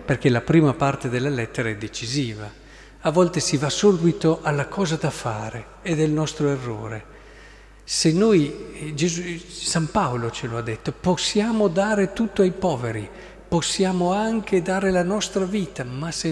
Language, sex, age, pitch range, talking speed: Italian, male, 50-69, 125-180 Hz, 160 wpm